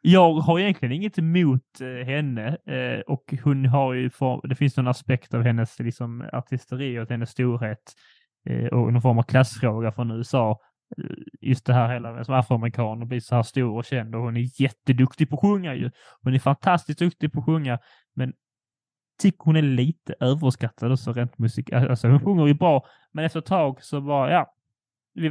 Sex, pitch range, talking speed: male, 125-155 Hz, 195 wpm